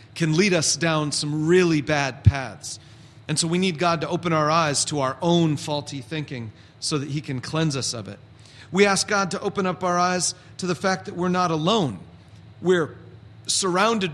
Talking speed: 200 wpm